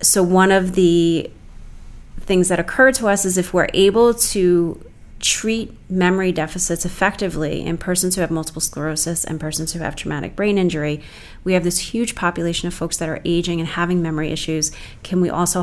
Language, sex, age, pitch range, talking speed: English, female, 30-49, 155-180 Hz, 185 wpm